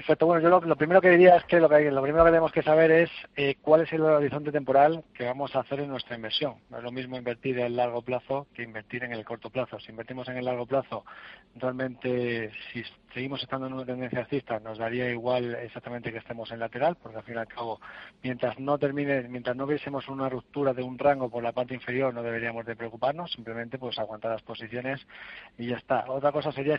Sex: male